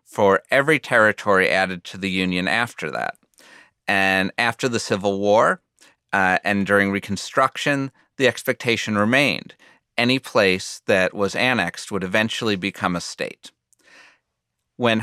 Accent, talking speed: American, 130 wpm